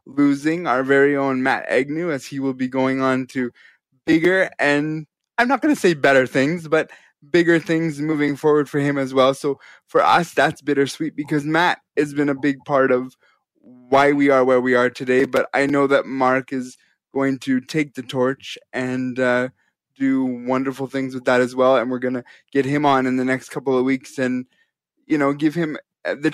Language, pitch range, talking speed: English, 130-150 Hz, 205 wpm